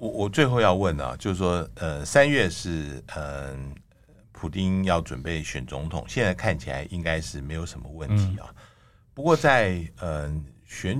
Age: 60-79